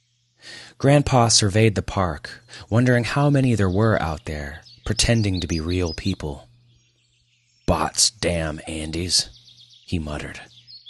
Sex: male